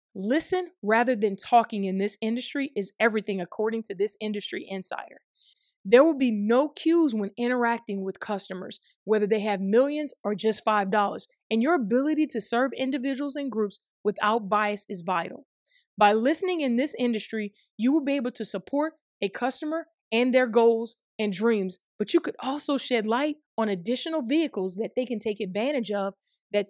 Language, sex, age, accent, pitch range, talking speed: English, female, 20-39, American, 205-265 Hz, 175 wpm